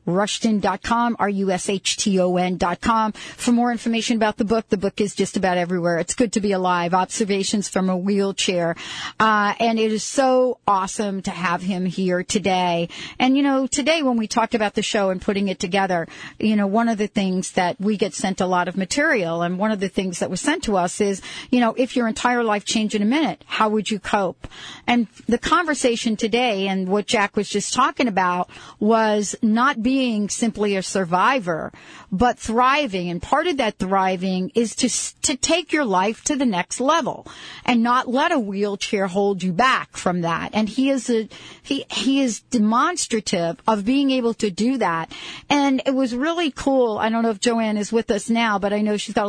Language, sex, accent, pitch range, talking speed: English, female, American, 195-245 Hz, 200 wpm